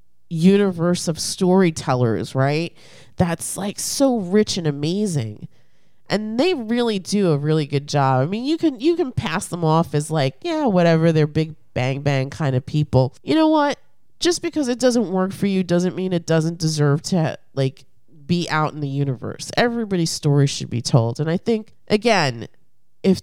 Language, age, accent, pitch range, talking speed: English, 30-49, American, 145-210 Hz, 180 wpm